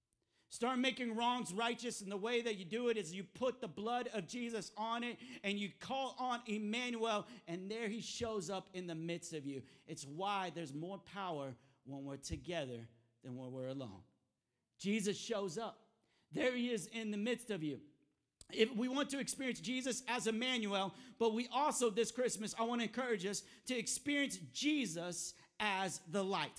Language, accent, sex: English, American, male